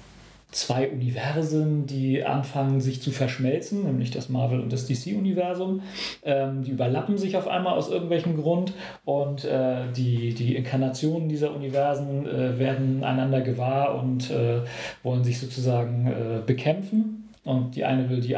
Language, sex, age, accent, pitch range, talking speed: German, male, 40-59, German, 130-160 Hz, 145 wpm